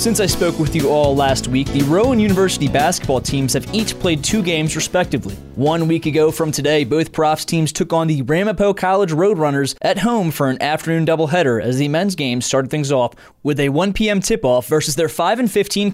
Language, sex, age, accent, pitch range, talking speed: English, male, 20-39, American, 140-180 Hz, 205 wpm